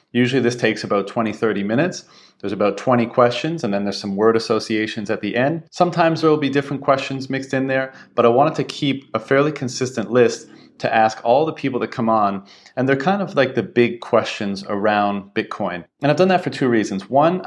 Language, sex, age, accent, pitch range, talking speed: English, male, 30-49, American, 100-125 Hz, 220 wpm